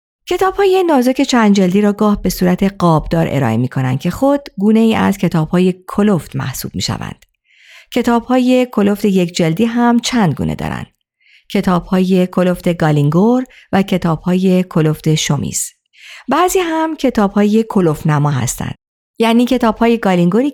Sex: female